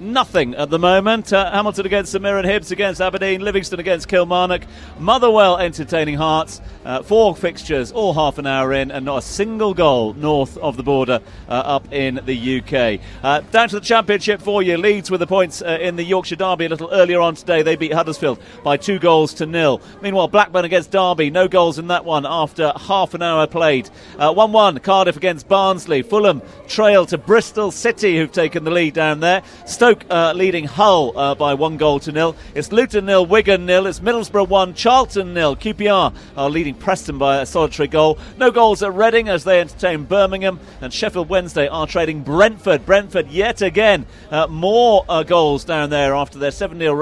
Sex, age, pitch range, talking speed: male, 40-59, 155-200 Hz, 195 wpm